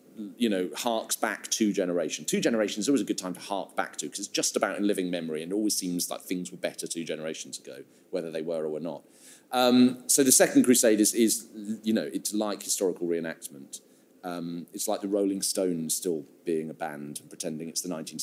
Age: 40-59